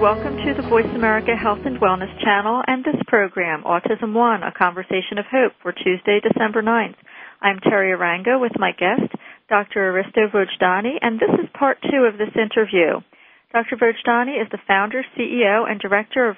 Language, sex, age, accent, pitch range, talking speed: English, female, 40-59, American, 205-245 Hz, 175 wpm